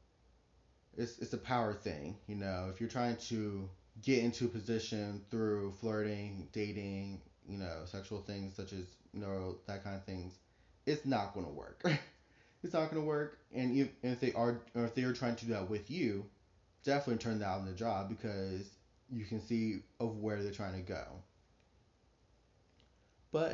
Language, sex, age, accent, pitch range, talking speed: English, male, 20-39, American, 100-120 Hz, 180 wpm